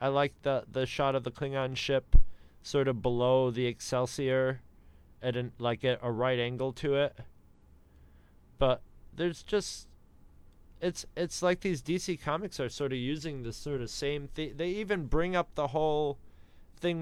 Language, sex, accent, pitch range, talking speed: English, male, American, 105-145 Hz, 165 wpm